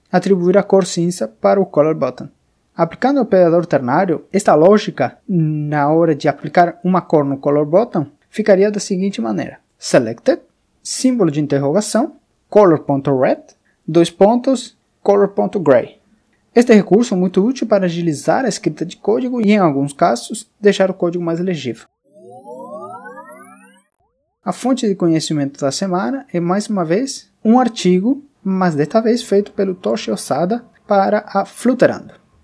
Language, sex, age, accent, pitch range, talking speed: Portuguese, male, 20-39, Brazilian, 155-210 Hz, 145 wpm